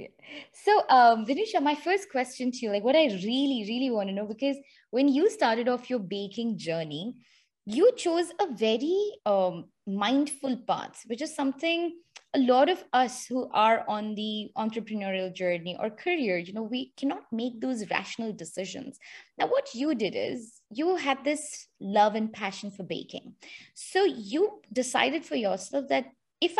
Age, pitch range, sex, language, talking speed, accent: 20-39, 215-300 Hz, female, English, 165 wpm, Indian